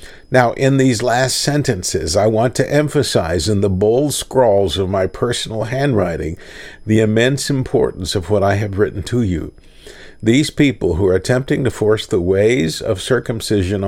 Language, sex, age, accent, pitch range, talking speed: English, male, 50-69, American, 100-130 Hz, 165 wpm